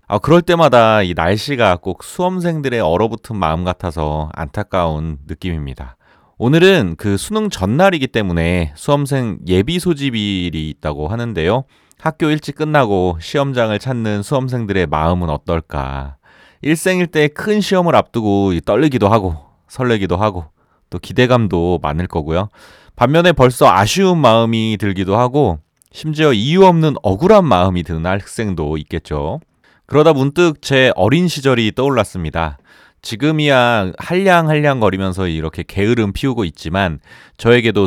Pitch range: 90-145 Hz